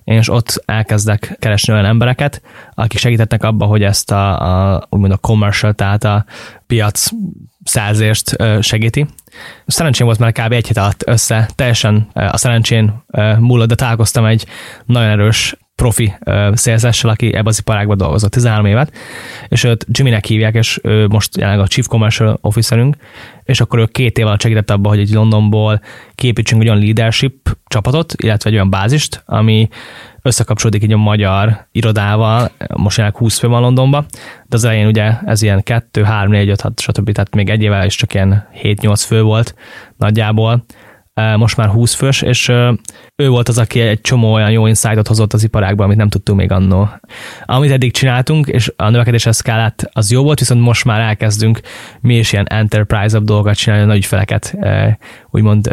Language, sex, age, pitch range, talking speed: English, male, 10-29, 105-120 Hz, 170 wpm